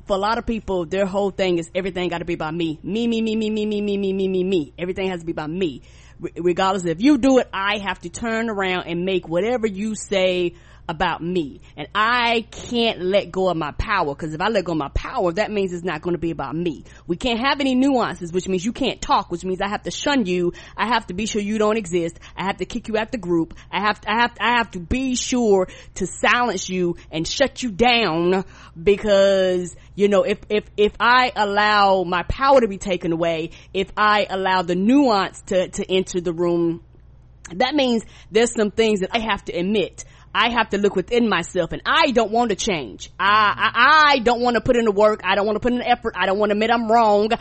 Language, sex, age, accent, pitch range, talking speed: English, female, 20-39, American, 180-225 Hz, 250 wpm